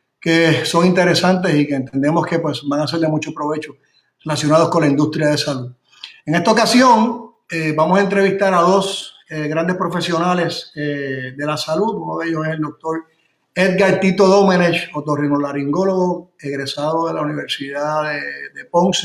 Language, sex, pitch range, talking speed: Spanish, male, 145-180 Hz, 165 wpm